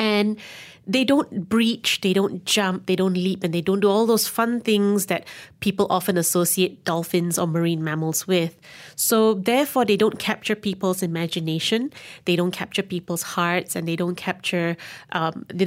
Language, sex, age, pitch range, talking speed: English, female, 30-49, 170-205 Hz, 170 wpm